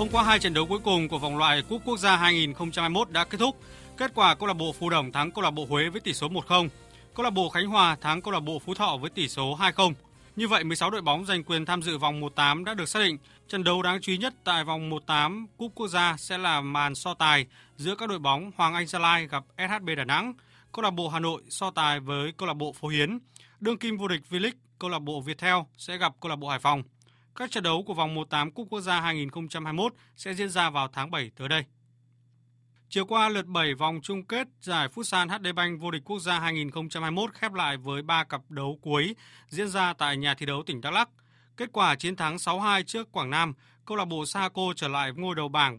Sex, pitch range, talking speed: male, 145-190 Hz, 250 wpm